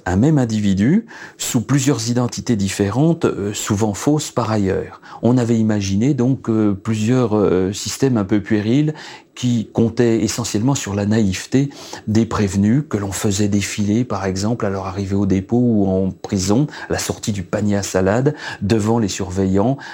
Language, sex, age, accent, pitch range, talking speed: French, male, 40-59, French, 95-125 Hz, 155 wpm